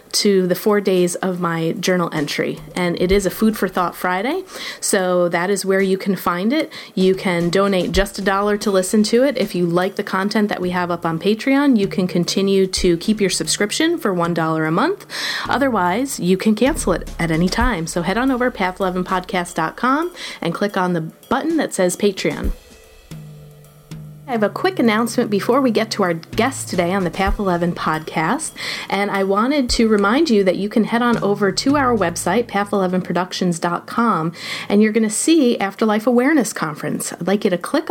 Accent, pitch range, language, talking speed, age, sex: American, 180-220 Hz, English, 195 wpm, 30-49, female